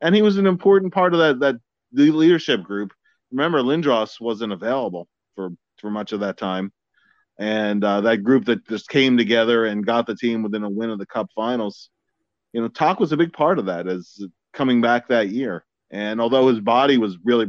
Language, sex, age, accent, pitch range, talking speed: English, male, 30-49, American, 105-130 Hz, 210 wpm